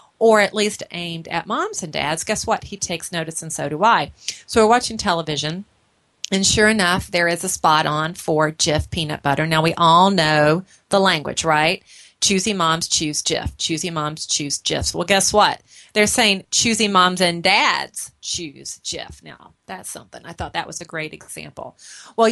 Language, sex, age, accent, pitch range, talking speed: English, female, 30-49, American, 160-210 Hz, 190 wpm